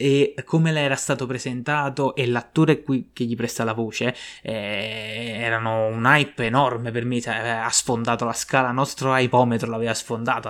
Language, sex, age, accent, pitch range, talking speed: Italian, male, 20-39, native, 115-140 Hz, 165 wpm